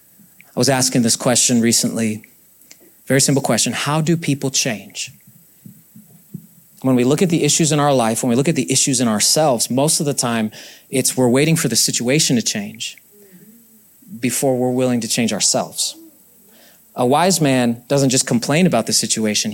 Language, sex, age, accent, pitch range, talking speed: English, male, 30-49, American, 125-165 Hz, 175 wpm